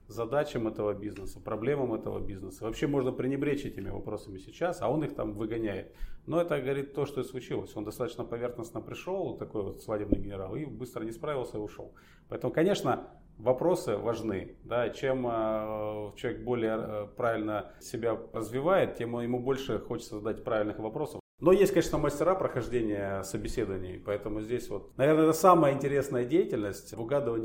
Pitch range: 105-130 Hz